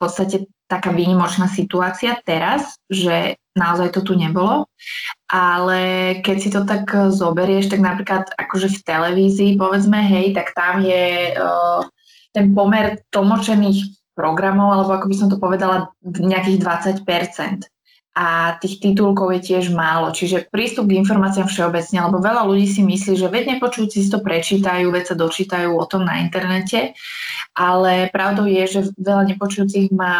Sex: female